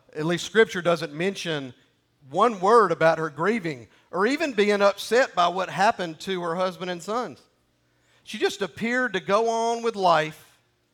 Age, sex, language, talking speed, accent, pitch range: 50-69, male, English, 165 wpm, American, 130-185 Hz